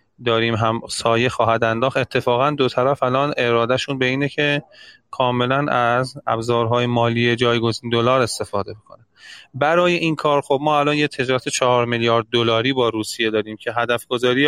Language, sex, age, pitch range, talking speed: Persian, male, 30-49, 115-130 Hz, 160 wpm